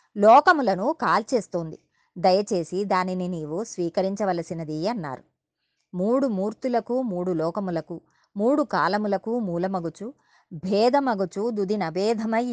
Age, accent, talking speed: 30-49, native, 75 wpm